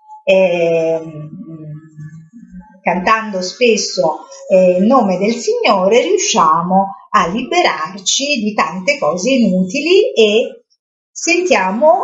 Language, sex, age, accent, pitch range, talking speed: Italian, female, 50-69, native, 190-260 Hz, 75 wpm